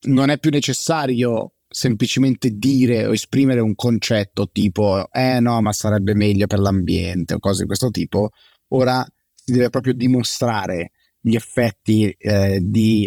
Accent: native